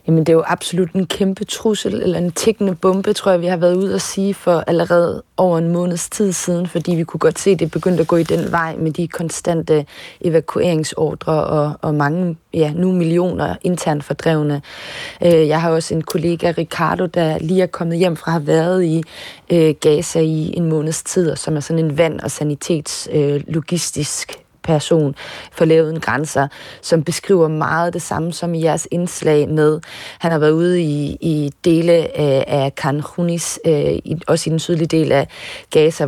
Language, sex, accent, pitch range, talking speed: Danish, female, native, 150-175 Hz, 190 wpm